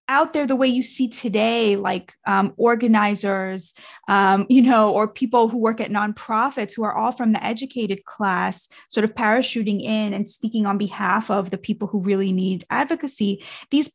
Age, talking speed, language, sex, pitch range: 20-39, 180 wpm, English, female, 205-265 Hz